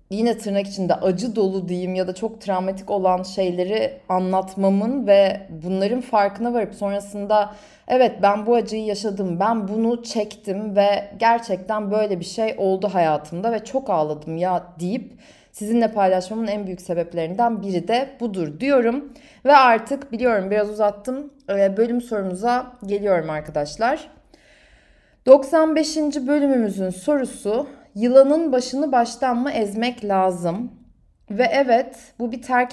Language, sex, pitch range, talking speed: Turkish, female, 185-240 Hz, 130 wpm